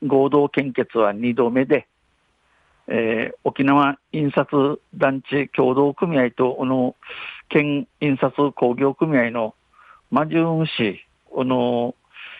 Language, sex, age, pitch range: Japanese, male, 50-69, 125-155 Hz